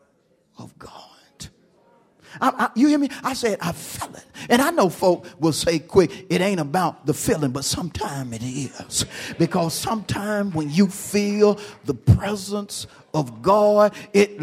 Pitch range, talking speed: 165-210 Hz, 150 wpm